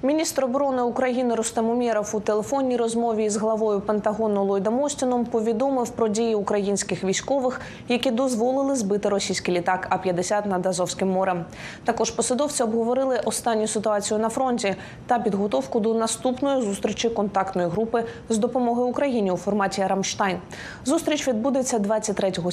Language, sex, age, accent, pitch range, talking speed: Ukrainian, female, 20-39, native, 200-250 Hz, 135 wpm